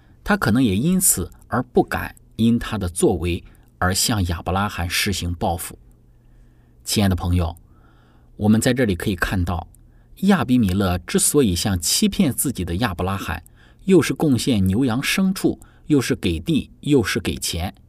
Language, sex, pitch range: Chinese, male, 90-130 Hz